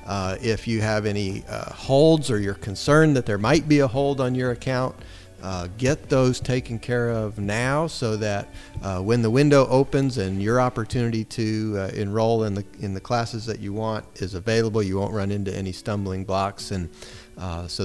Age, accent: 40-59, American